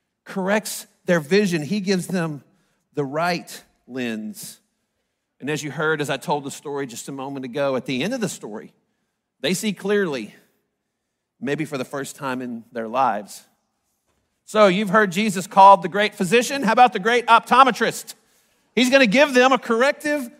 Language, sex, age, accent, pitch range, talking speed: English, male, 50-69, American, 165-220 Hz, 170 wpm